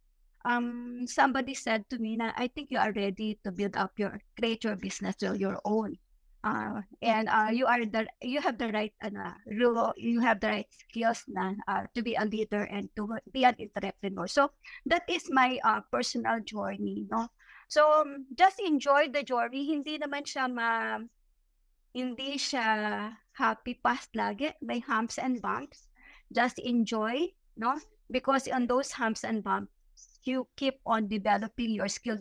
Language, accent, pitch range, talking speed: English, Filipino, 215-260 Hz, 170 wpm